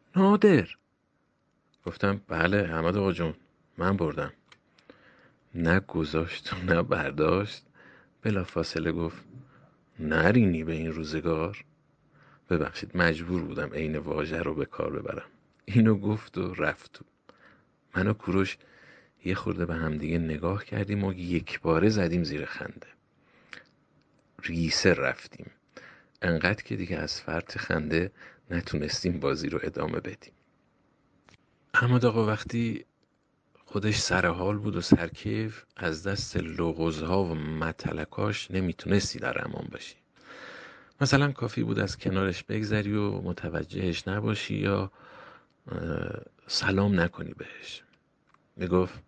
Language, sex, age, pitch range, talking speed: Persian, male, 50-69, 85-105 Hz, 110 wpm